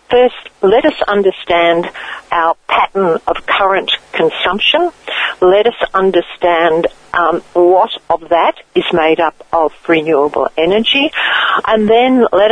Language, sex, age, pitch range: English, female, 60-79, 165-230 Hz